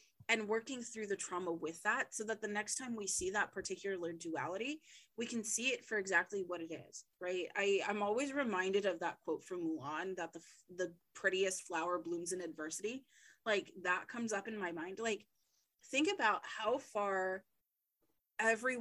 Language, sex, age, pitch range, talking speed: English, female, 20-39, 180-230 Hz, 180 wpm